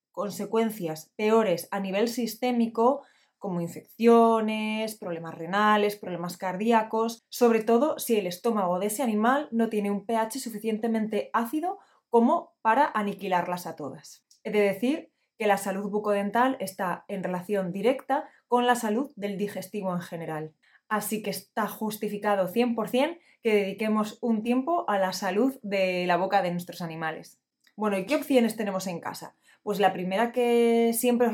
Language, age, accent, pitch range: Spanish, 20-39, Spanish, 200-245 Hz